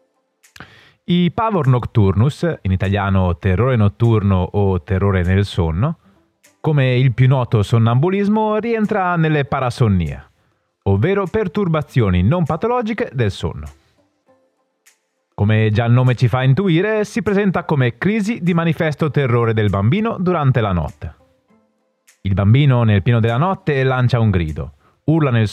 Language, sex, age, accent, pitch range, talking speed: Italian, male, 30-49, native, 100-155 Hz, 130 wpm